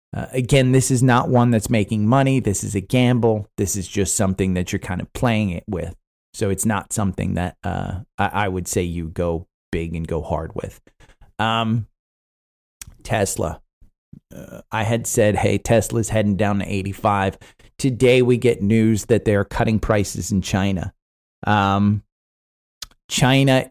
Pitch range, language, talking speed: 95-120 Hz, English, 165 wpm